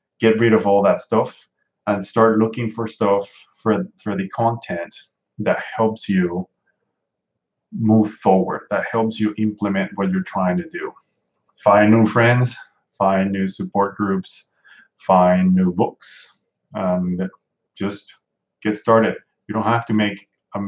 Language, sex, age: English, male, 20-39